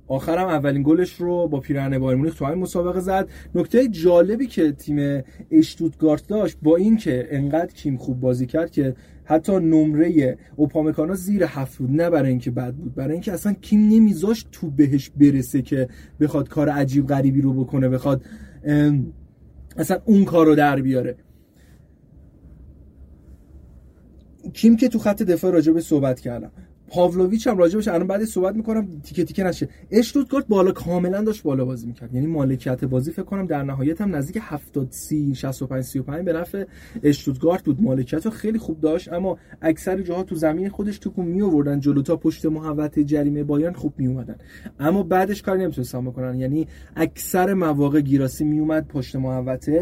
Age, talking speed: 30-49, 165 wpm